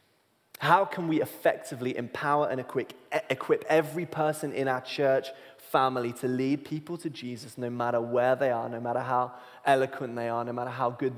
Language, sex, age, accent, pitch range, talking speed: English, male, 20-39, British, 120-140 Hz, 175 wpm